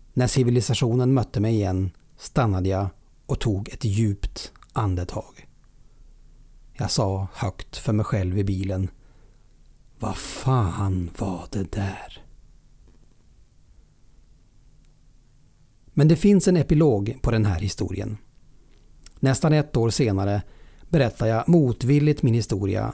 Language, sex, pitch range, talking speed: Swedish, male, 100-130 Hz, 110 wpm